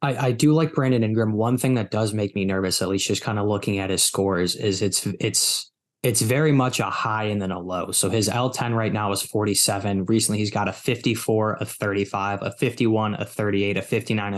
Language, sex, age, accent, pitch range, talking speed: English, male, 20-39, American, 105-125 Hz, 225 wpm